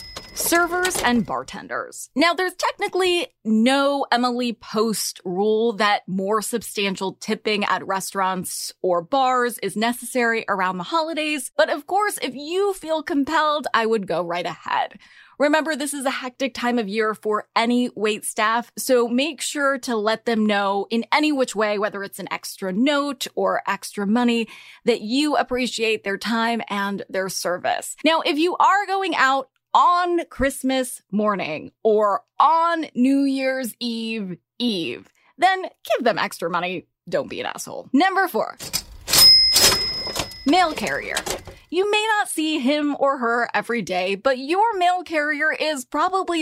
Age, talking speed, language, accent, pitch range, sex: 20-39, 150 wpm, English, American, 210-285 Hz, female